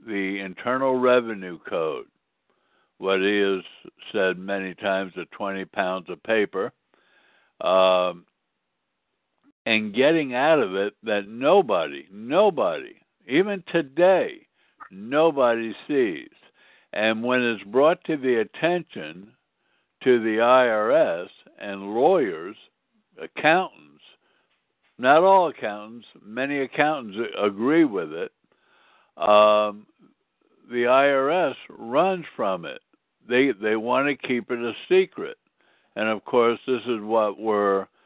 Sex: male